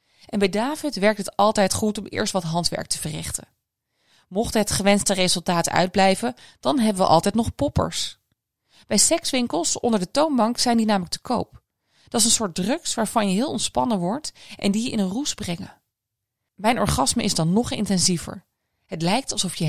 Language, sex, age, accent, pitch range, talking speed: Dutch, female, 20-39, Dutch, 170-230 Hz, 185 wpm